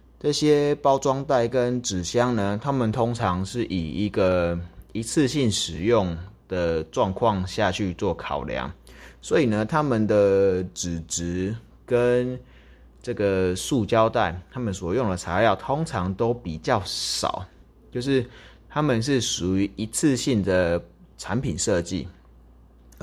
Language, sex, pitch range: Chinese, male, 85-115 Hz